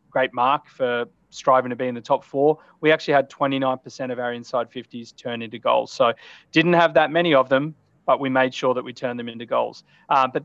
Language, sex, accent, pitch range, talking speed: English, male, Australian, 120-140 Hz, 235 wpm